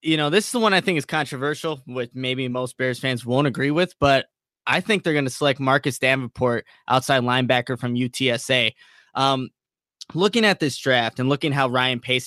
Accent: American